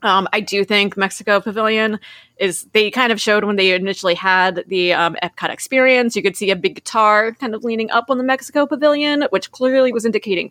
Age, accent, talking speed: 20-39, American, 210 wpm